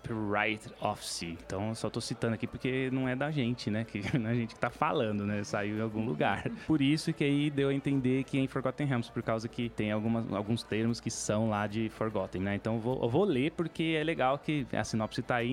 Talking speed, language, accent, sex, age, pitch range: 260 wpm, Portuguese, Brazilian, male, 20-39, 110-135 Hz